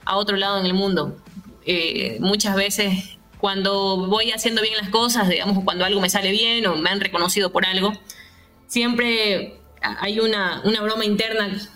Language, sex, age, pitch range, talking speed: Spanish, female, 20-39, 185-215 Hz, 170 wpm